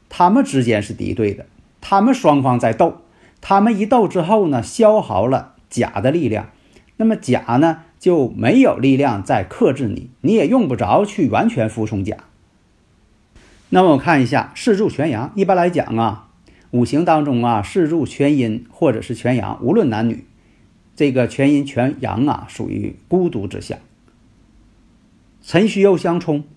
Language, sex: Chinese, male